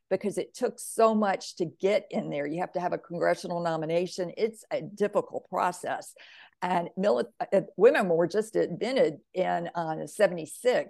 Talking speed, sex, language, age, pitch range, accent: 155 wpm, female, English, 50-69, 175-205 Hz, American